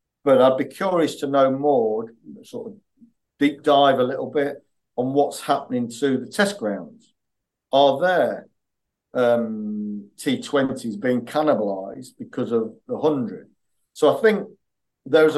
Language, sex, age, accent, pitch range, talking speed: English, male, 50-69, British, 120-150 Hz, 135 wpm